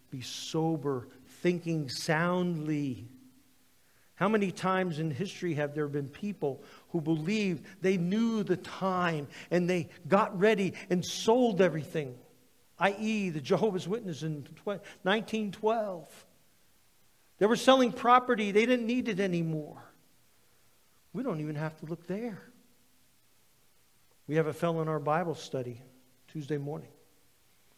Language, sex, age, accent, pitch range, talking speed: English, male, 50-69, American, 165-220 Hz, 125 wpm